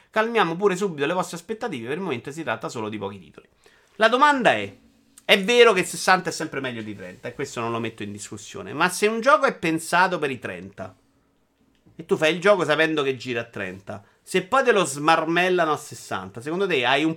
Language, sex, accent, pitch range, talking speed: Italian, male, native, 150-210 Hz, 225 wpm